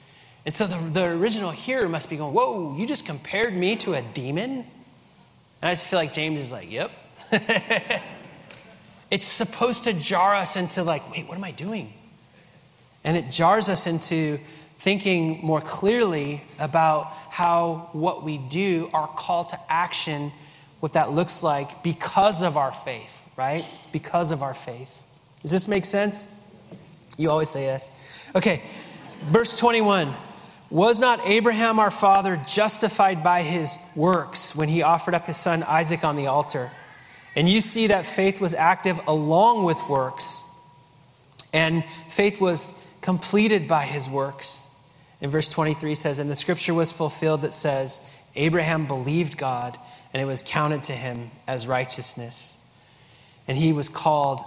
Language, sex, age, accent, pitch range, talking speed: English, male, 30-49, American, 140-185 Hz, 155 wpm